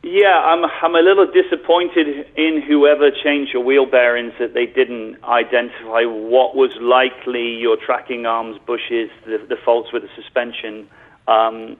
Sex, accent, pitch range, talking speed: male, British, 115-145 Hz, 155 wpm